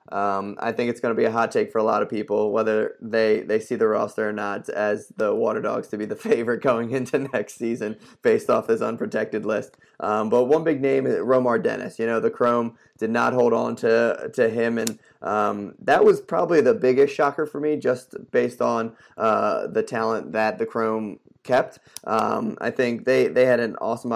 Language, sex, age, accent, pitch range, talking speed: English, male, 20-39, American, 110-130 Hz, 215 wpm